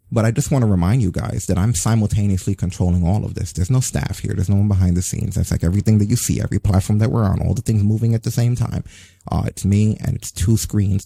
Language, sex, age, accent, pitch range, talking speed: English, male, 30-49, American, 90-110 Hz, 275 wpm